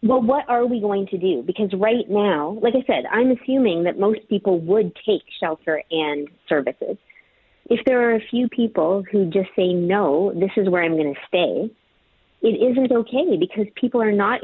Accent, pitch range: American, 185-235 Hz